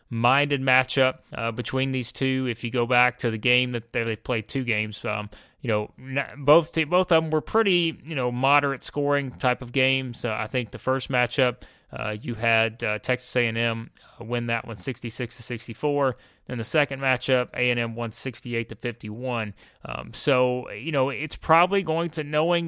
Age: 30-49